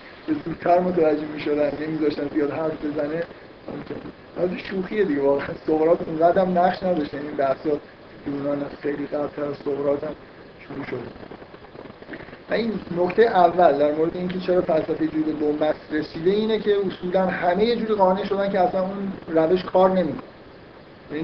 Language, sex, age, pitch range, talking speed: Persian, male, 50-69, 150-185 Hz, 160 wpm